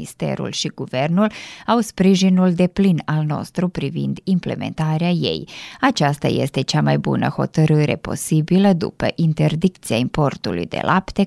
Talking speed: 130 wpm